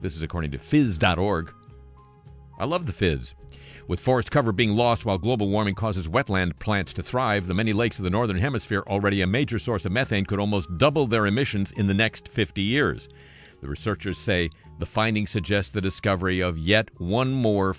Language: English